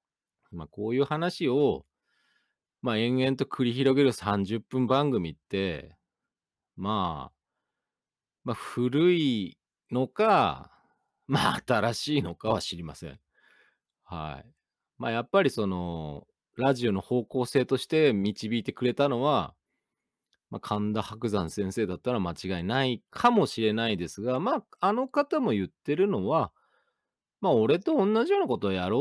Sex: male